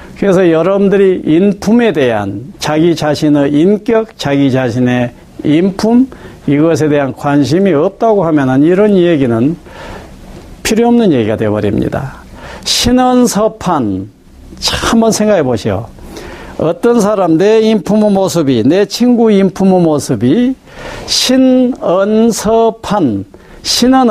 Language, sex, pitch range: Korean, male, 150-220 Hz